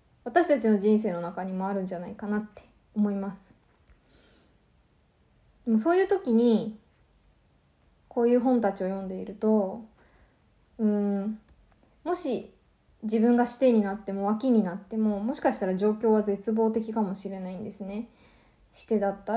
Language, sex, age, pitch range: Japanese, female, 20-39, 195-225 Hz